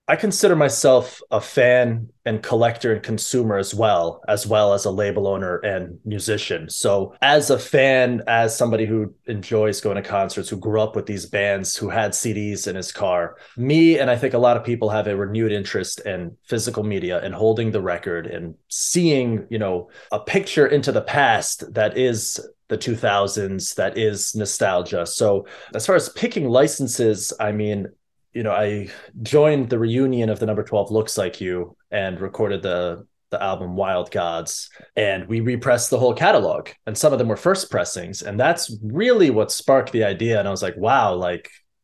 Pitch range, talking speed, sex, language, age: 100-120 Hz, 190 wpm, male, English, 20-39